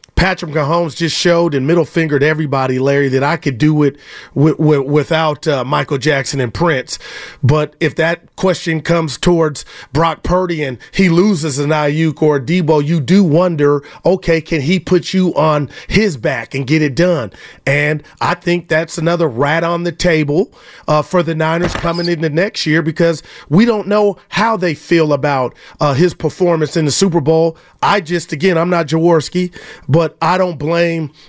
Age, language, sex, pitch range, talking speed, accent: 30-49, English, male, 145-170 Hz, 185 wpm, American